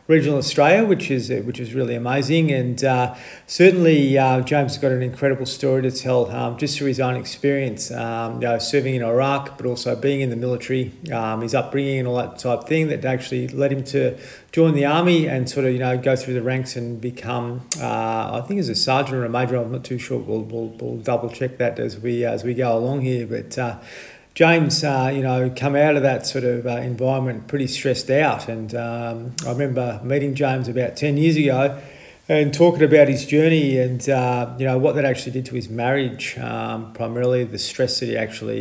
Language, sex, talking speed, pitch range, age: English, male, 220 wpm, 120-140 Hz, 40-59